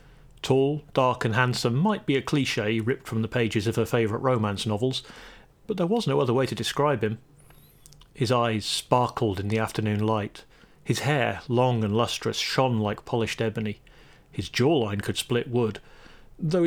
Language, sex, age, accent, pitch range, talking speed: English, male, 30-49, British, 115-145 Hz, 175 wpm